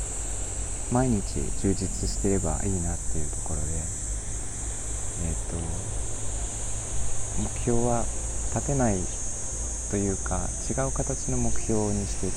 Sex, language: male, Japanese